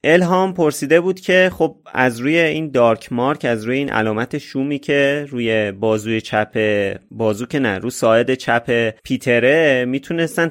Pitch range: 115-150 Hz